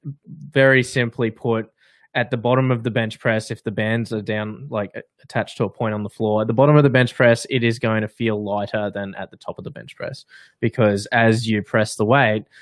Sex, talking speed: male, 240 wpm